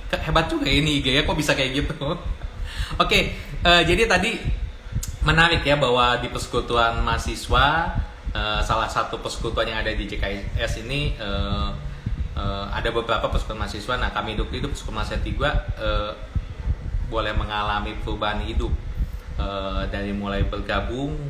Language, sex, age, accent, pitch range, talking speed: Indonesian, male, 20-39, native, 95-125 Hz, 140 wpm